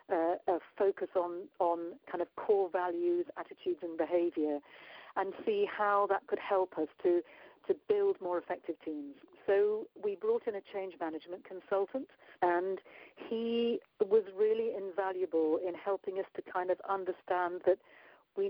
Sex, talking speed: female, 150 wpm